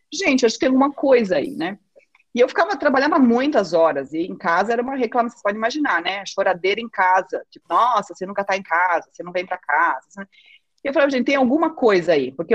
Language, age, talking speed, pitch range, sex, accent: Portuguese, 30-49, 230 wpm, 170-245 Hz, female, Brazilian